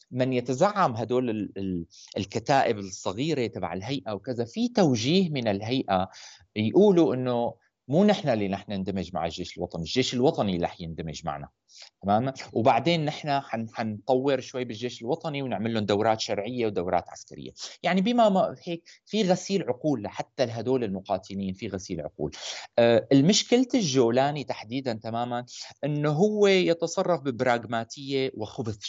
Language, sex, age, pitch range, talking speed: Arabic, male, 30-49, 105-150 Hz, 130 wpm